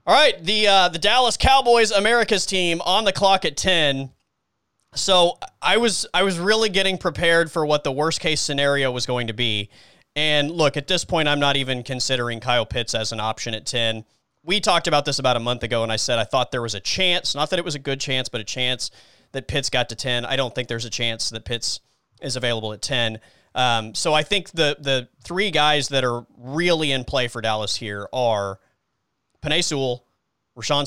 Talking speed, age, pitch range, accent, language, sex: 215 wpm, 30-49, 120-165 Hz, American, English, male